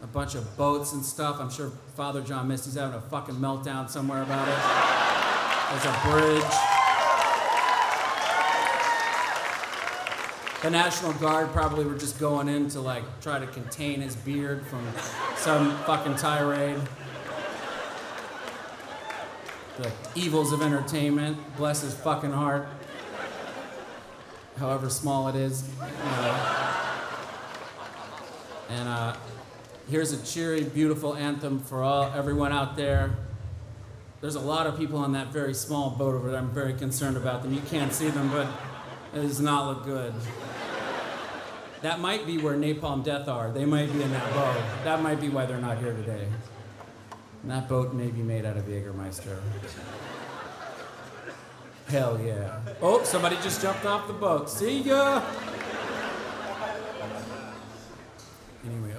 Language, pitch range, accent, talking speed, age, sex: English, 120-150 Hz, American, 135 wpm, 40-59, male